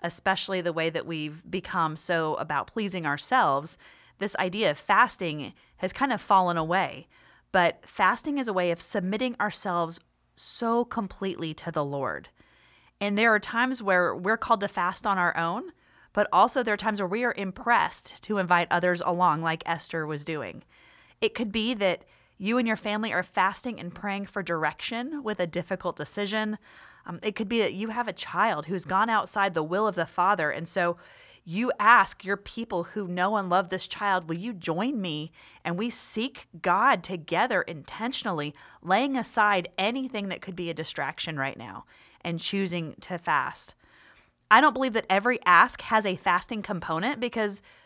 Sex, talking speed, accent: female, 180 wpm, American